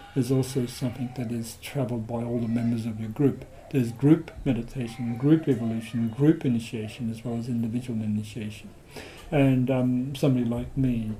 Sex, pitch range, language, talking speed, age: male, 115-140 Hz, English, 160 wpm, 60-79